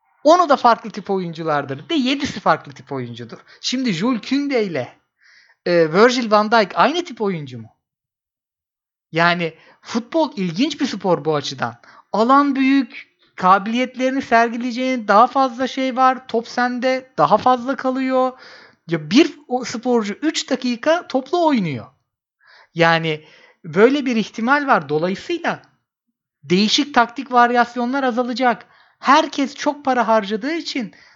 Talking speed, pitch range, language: 120 wpm, 175-260 Hz, Turkish